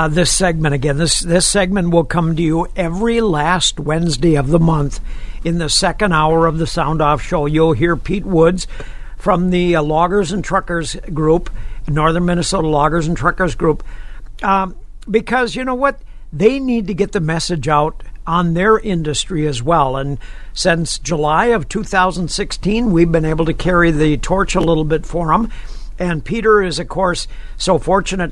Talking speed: 180 wpm